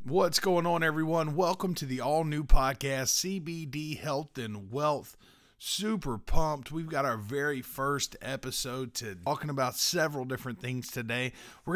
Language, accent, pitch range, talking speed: English, American, 120-155 Hz, 155 wpm